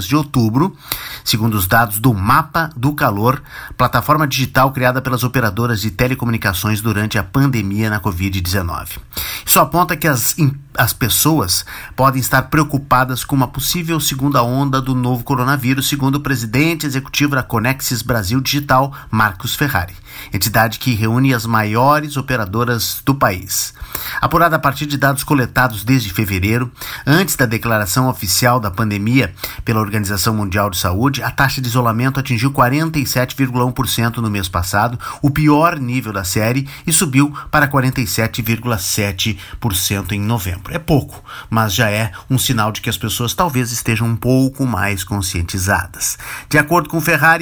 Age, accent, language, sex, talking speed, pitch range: 50-69, Brazilian, Portuguese, male, 150 wpm, 110-145 Hz